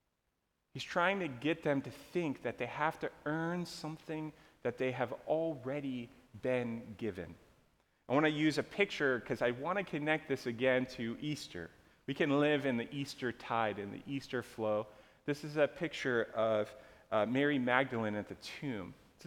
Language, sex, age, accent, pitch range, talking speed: English, male, 30-49, American, 120-155 Hz, 180 wpm